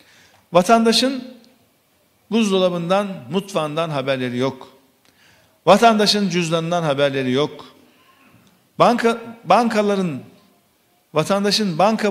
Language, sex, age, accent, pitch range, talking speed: Turkish, male, 50-69, native, 150-205 Hz, 65 wpm